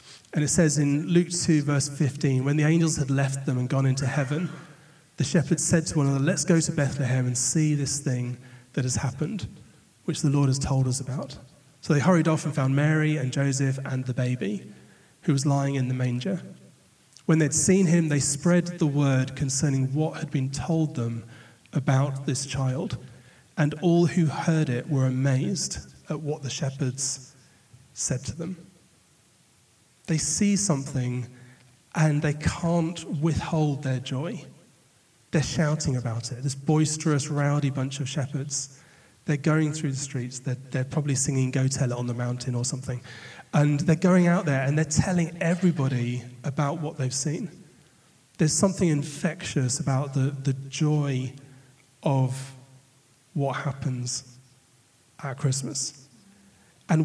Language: English